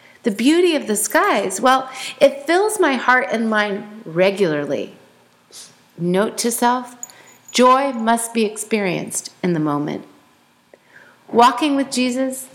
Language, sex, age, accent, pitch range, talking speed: English, female, 40-59, American, 190-255 Hz, 125 wpm